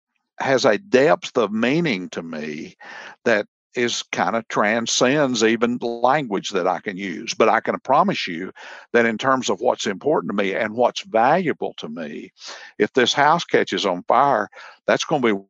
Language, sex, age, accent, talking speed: English, male, 60-79, American, 180 wpm